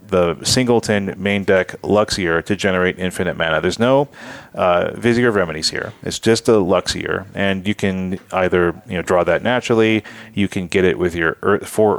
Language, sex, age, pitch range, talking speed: English, male, 30-49, 95-115 Hz, 185 wpm